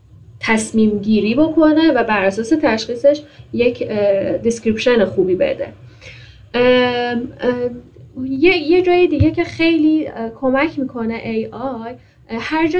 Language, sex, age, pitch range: Persian, female, 10-29, 220-270 Hz